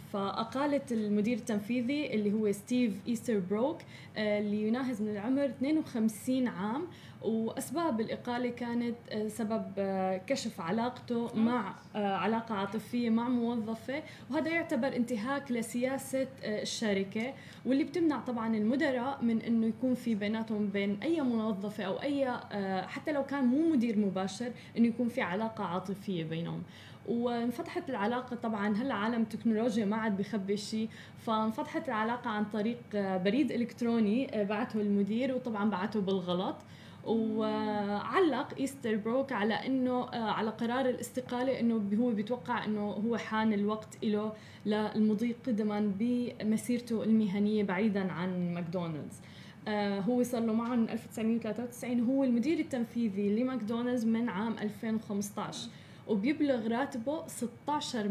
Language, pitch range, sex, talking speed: Arabic, 210-245 Hz, female, 120 wpm